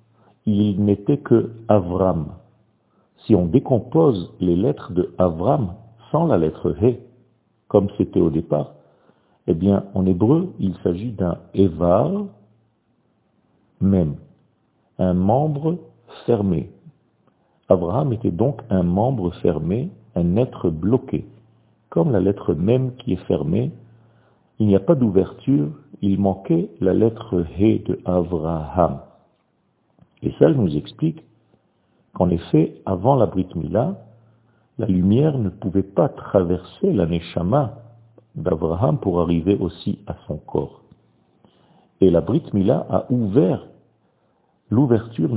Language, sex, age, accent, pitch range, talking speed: French, male, 50-69, French, 90-120 Hz, 140 wpm